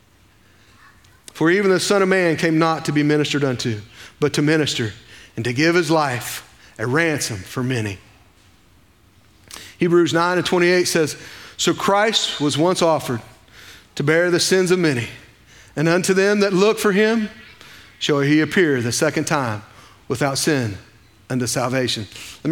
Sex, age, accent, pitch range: male, 40-59, American, 125-205 Hz